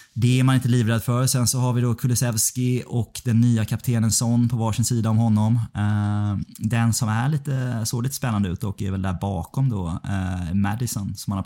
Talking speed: 205 wpm